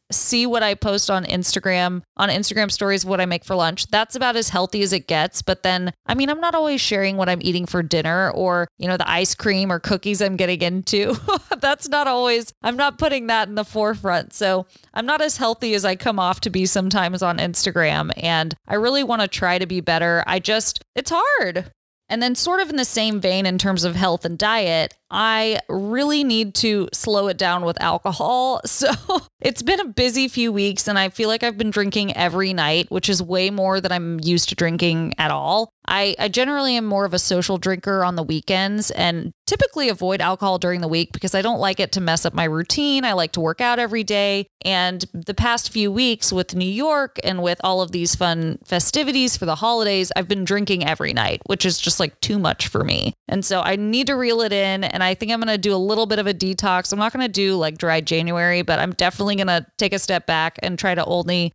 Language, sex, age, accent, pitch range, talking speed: English, female, 20-39, American, 175-220 Hz, 235 wpm